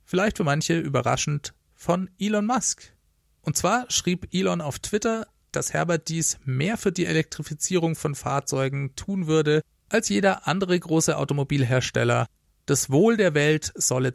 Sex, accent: male, German